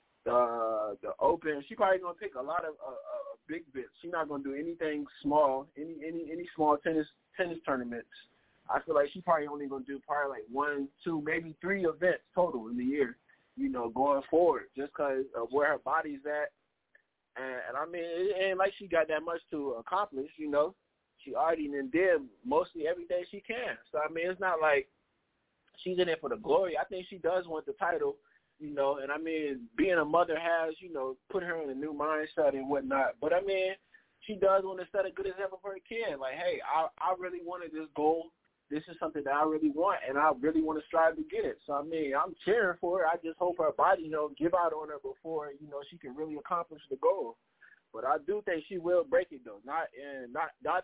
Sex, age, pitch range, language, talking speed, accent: male, 20-39, 145-185 Hz, English, 235 wpm, American